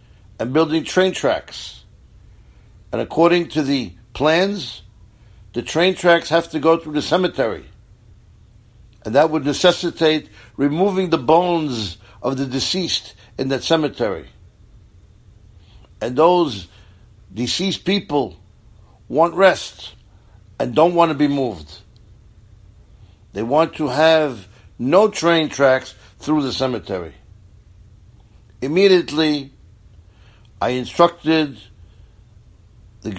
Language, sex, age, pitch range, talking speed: English, male, 60-79, 100-155 Hz, 105 wpm